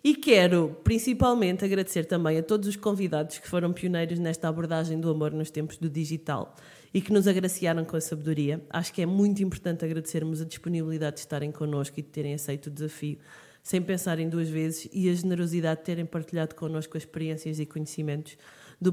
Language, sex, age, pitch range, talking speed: Portuguese, female, 20-39, 150-185 Hz, 185 wpm